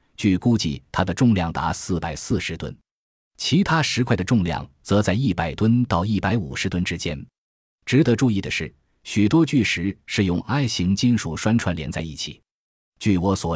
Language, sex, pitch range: Chinese, male, 85-115 Hz